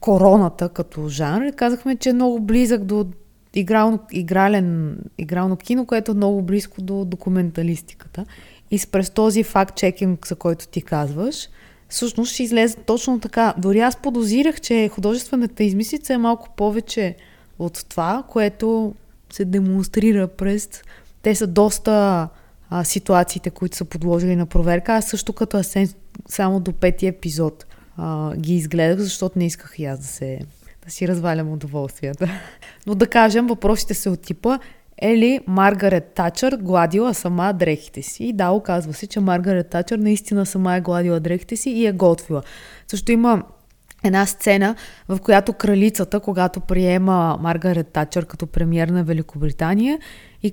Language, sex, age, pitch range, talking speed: Bulgarian, female, 20-39, 175-220 Hz, 150 wpm